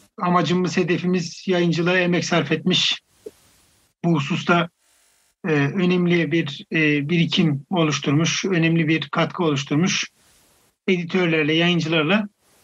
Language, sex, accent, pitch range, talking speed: Turkish, male, native, 150-180 Hz, 95 wpm